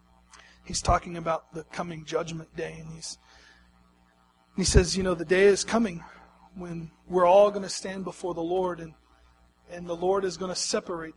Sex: male